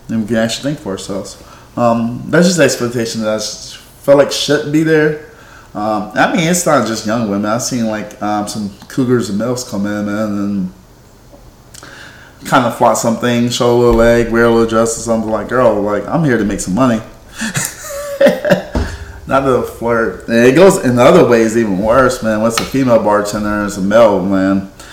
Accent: American